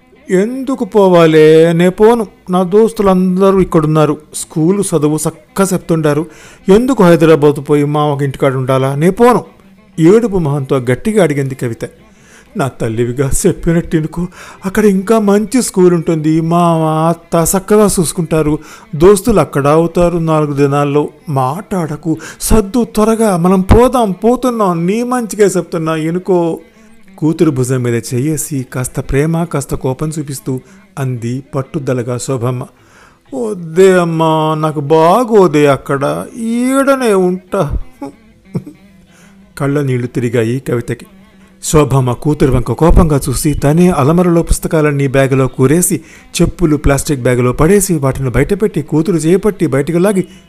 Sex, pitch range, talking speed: male, 140-190 Hz, 115 wpm